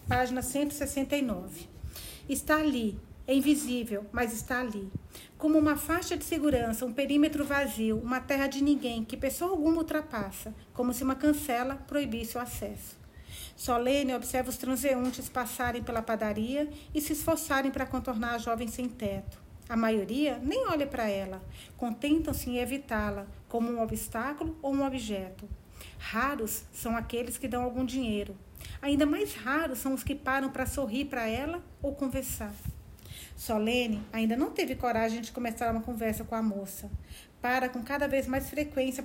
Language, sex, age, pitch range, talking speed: Portuguese, female, 40-59, 225-275 Hz, 155 wpm